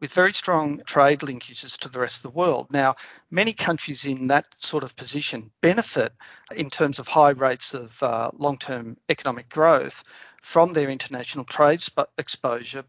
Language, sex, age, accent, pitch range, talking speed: English, male, 50-69, Australian, 135-170 Hz, 165 wpm